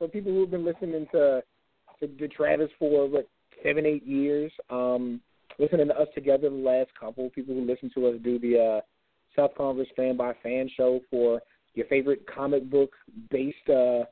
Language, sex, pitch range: English, male, 125-145 Hz